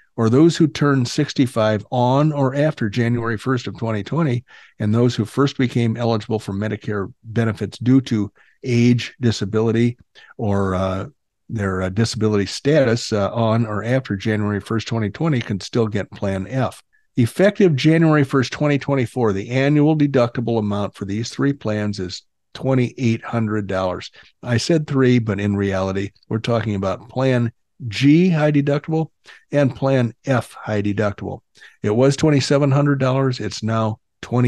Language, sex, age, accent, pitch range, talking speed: English, male, 50-69, American, 105-135 Hz, 145 wpm